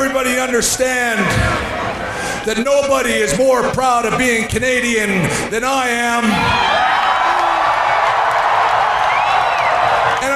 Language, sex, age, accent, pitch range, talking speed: English, male, 40-59, American, 245-285 Hz, 80 wpm